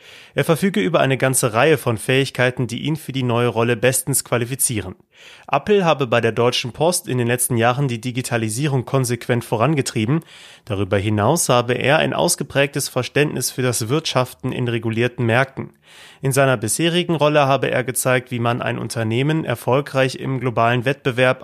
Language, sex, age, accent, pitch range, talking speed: German, male, 30-49, German, 120-145 Hz, 160 wpm